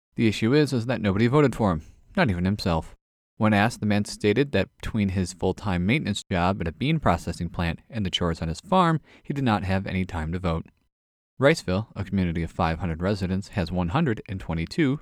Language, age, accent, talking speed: English, 30-49, American, 200 wpm